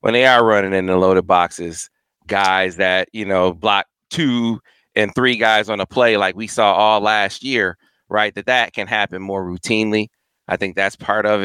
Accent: American